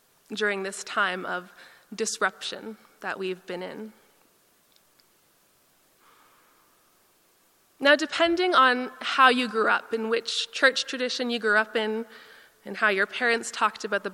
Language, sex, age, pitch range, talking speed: English, female, 20-39, 200-250 Hz, 130 wpm